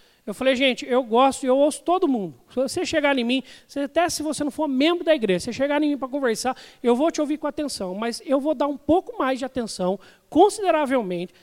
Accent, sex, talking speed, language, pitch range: Brazilian, male, 240 wpm, Portuguese, 210-275 Hz